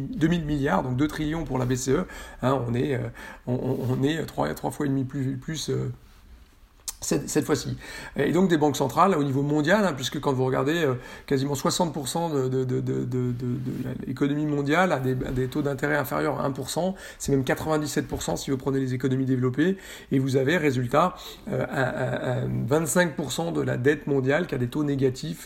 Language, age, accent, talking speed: French, 40-59, French, 195 wpm